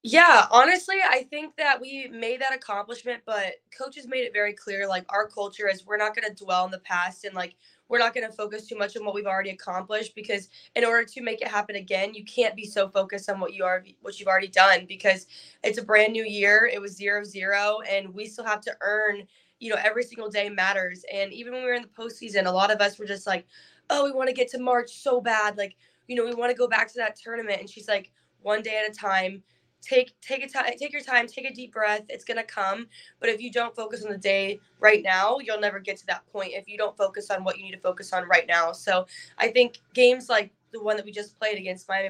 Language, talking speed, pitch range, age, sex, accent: English, 260 wpm, 195-230 Hz, 20-39, female, American